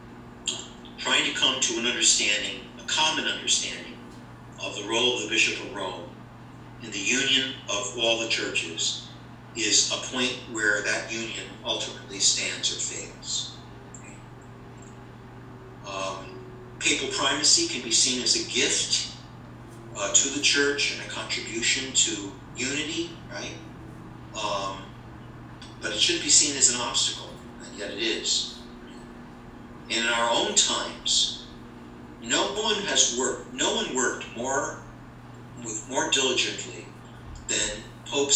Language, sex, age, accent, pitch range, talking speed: English, male, 50-69, American, 110-125 Hz, 130 wpm